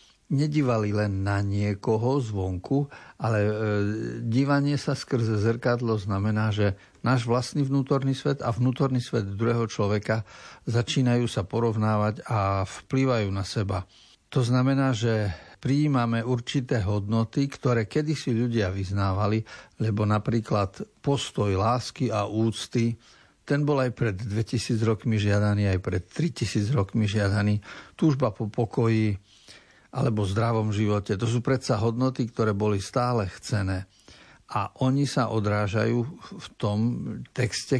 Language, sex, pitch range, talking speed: Slovak, male, 105-125 Hz, 125 wpm